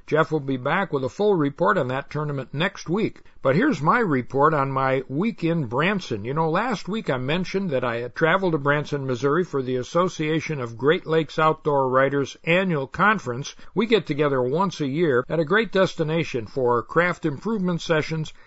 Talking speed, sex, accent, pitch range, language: 190 wpm, male, American, 135-180 Hz, English